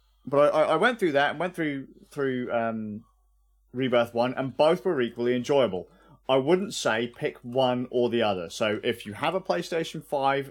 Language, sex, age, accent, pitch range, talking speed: English, male, 30-49, British, 115-150 Hz, 190 wpm